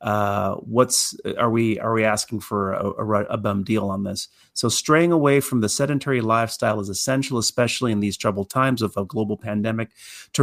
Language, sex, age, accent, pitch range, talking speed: English, male, 40-59, American, 110-140 Hz, 195 wpm